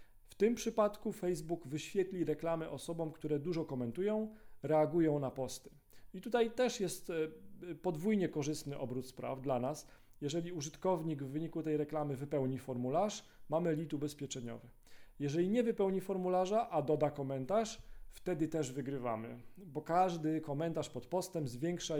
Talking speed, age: 135 wpm, 40-59